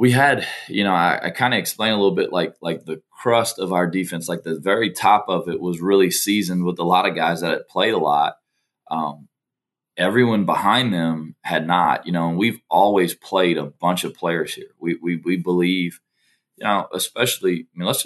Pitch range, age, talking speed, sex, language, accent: 80-95 Hz, 20-39, 215 wpm, male, English, American